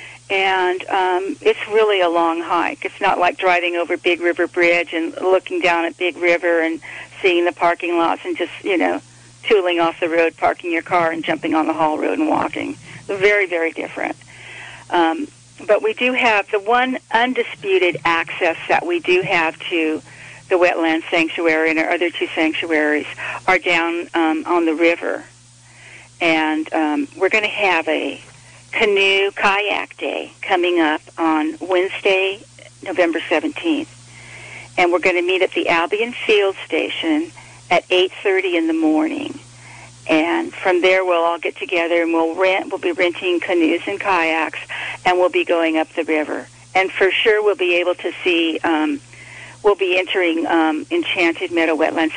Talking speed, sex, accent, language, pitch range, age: 165 wpm, female, American, English, 165-190 Hz, 50-69